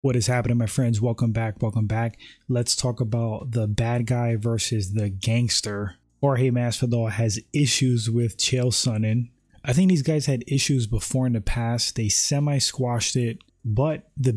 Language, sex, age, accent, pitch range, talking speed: English, male, 20-39, American, 115-135 Hz, 165 wpm